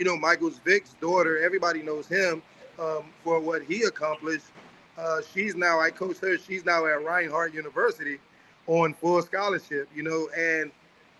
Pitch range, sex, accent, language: 165-210 Hz, male, American, English